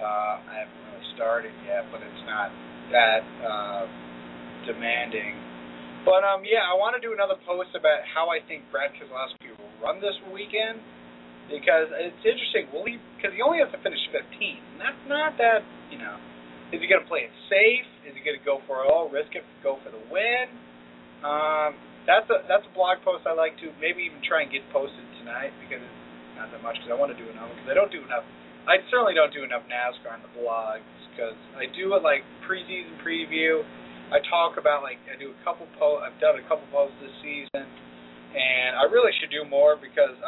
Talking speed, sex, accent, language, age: 210 wpm, male, American, English, 30-49